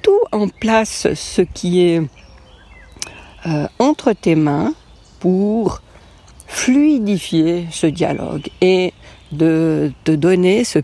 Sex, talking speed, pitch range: female, 100 wpm, 150-195 Hz